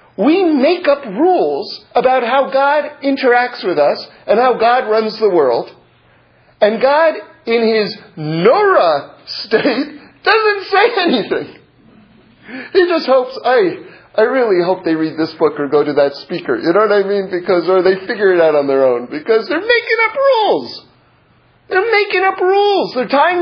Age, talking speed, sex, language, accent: 40-59, 170 wpm, male, English, American